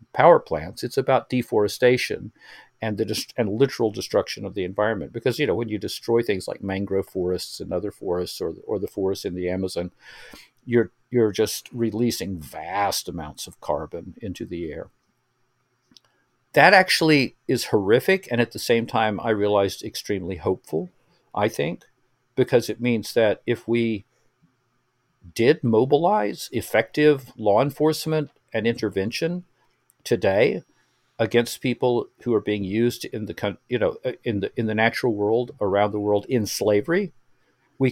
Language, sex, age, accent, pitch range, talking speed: English, male, 50-69, American, 105-125 Hz, 150 wpm